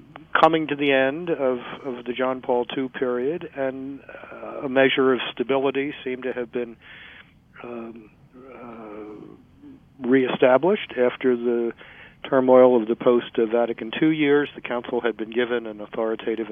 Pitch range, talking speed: 120-145 Hz, 140 wpm